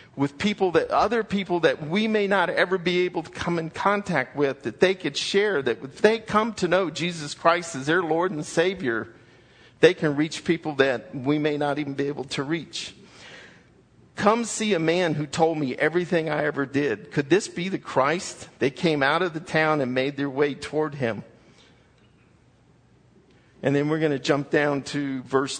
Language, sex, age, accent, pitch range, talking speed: English, male, 50-69, American, 135-165 Hz, 195 wpm